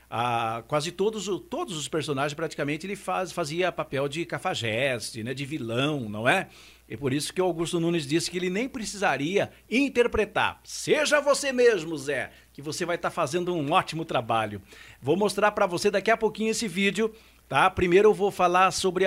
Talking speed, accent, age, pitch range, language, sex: 185 wpm, Brazilian, 50-69, 150-215 Hz, English, male